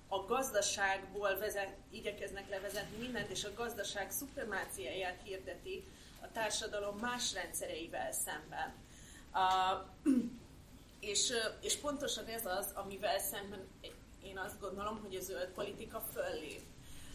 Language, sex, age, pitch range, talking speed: Hungarian, female, 30-49, 185-230 Hz, 110 wpm